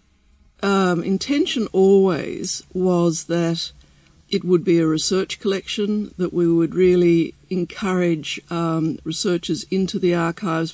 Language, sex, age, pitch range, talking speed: English, female, 50-69, 160-190 Hz, 115 wpm